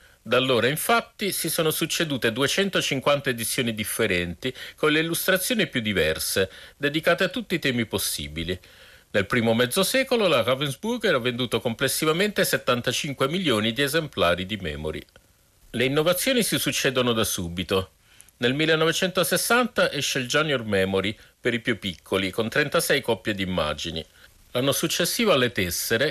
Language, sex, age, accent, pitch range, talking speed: Italian, male, 50-69, native, 110-170 Hz, 140 wpm